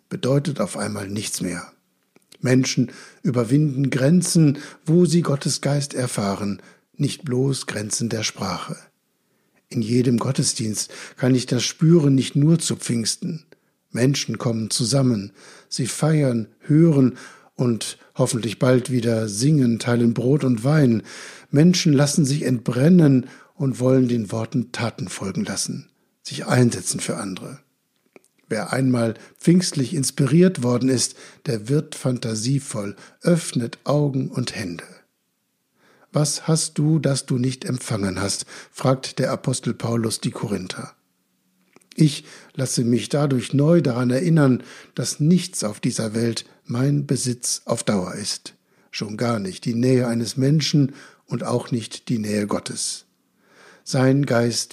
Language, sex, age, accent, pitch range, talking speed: German, male, 60-79, German, 115-145 Hz, 130 wpm